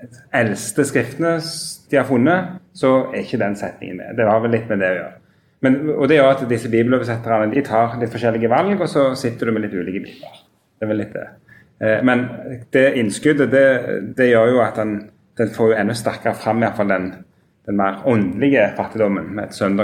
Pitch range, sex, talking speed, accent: 105-130 Hz, male, 220 wpm, Norwegian